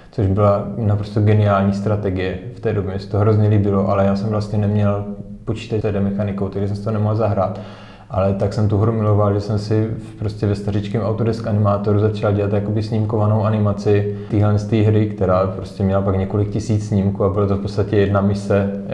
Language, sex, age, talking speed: Czech, male, 20-39, 200 wpm